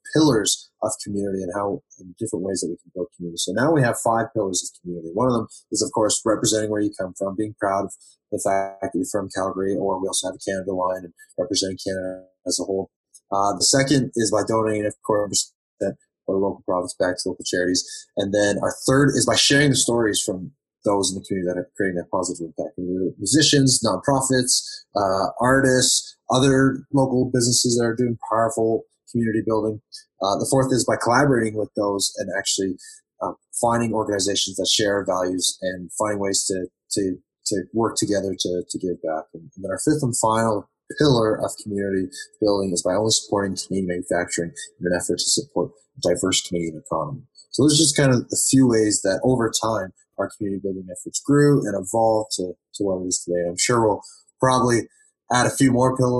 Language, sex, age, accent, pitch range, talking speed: English, male, 30-49, American, 95-125 Hz, 200 wpm